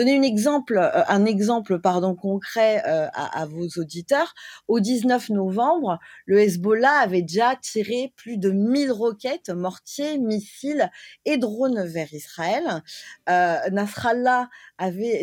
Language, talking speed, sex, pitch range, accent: Italian, 135 wpm, female, 185-255 Hz, French